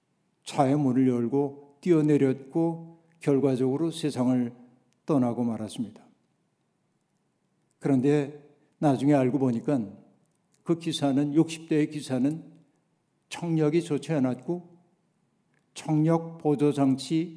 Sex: male